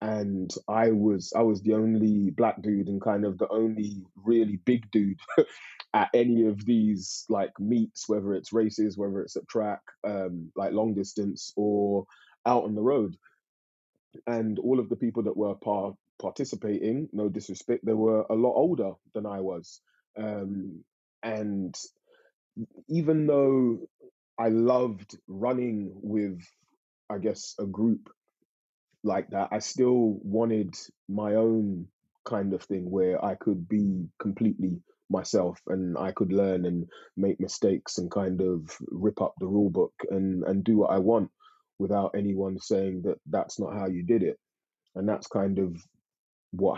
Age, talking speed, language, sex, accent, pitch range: 20-39, 155 wpm, English, male, British, 95-110 Hz